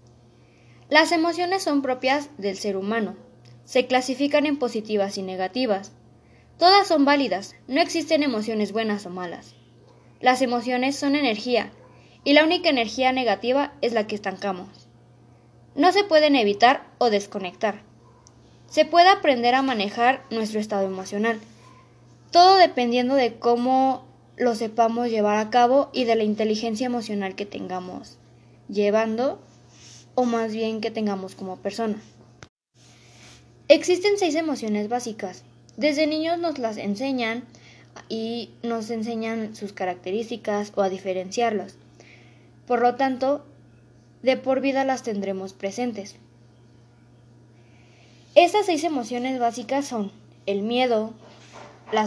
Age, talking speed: 20-39, 125 wpm